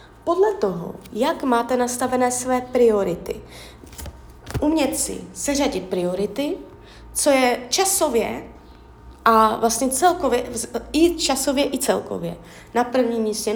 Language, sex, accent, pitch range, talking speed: Czech, female, native, 220-290 Hz, 105 wpm